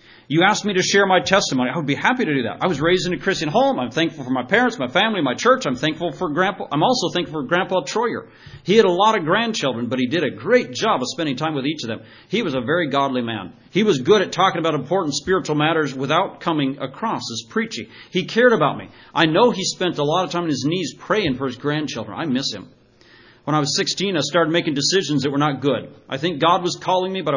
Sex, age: male, 40-59